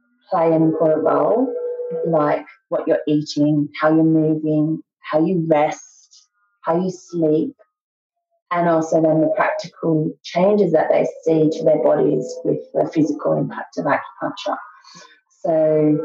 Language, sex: English, female